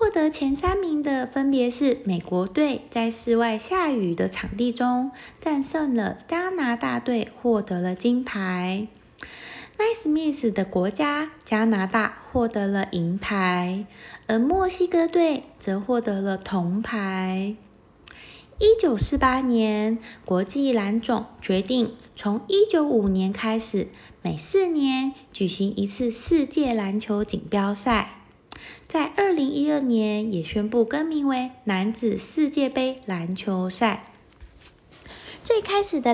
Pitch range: 200-285 Hz